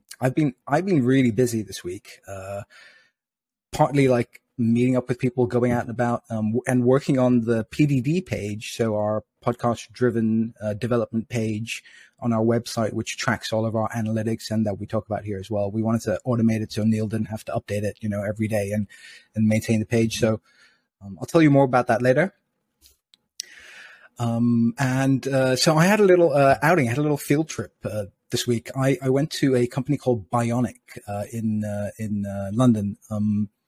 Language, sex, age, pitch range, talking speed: English, male, 30-49, 105-125 Hz, 205 wpm